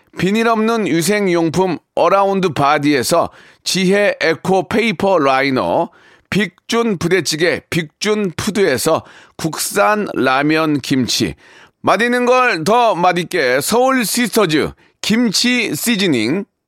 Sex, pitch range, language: male, 180-230 Hz, Korean